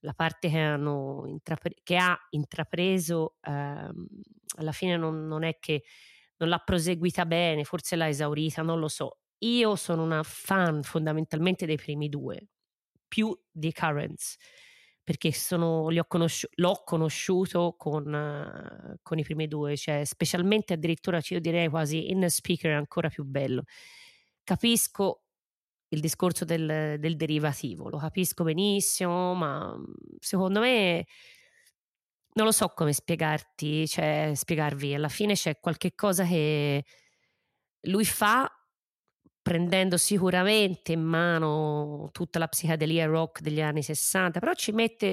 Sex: female